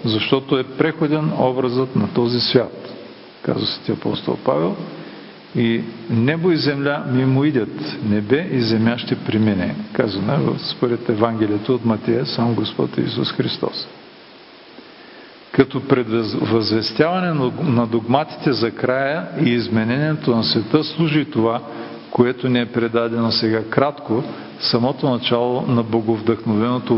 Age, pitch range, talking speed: 50-69, 115-145 Hz, 115 wpm